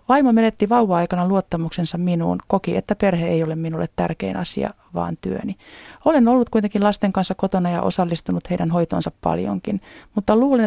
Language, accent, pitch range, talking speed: Finnish, native, 165-220 Hz, 155 wpm